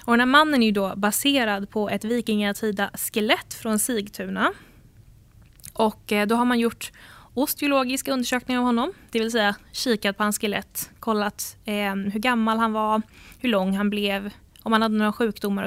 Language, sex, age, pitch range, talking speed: Swedish, female, 20-39, 200-235 Hz, 165 wpm